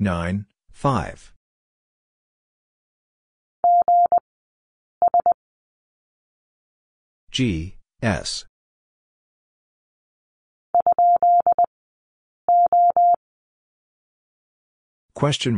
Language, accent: English, American